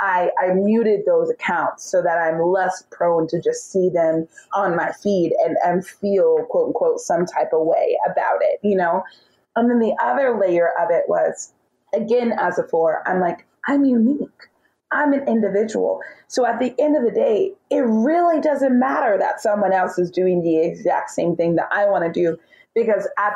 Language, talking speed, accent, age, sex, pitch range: English, 195 wpm, American, 30-49, female, 180-295 Hz